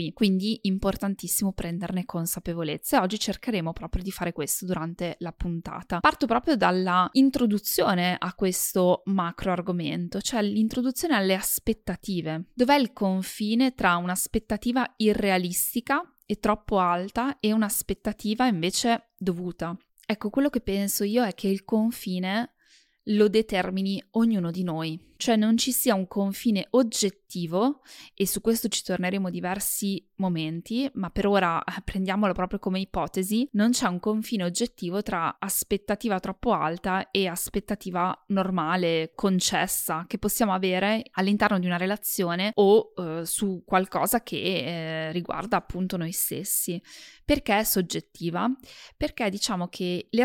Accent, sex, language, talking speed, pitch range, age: native, female, Italian, 135 wpm, 180-220 Hz, 20-39